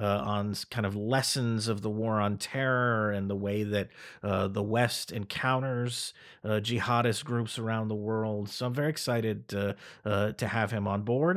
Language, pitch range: English, 105-125 Hz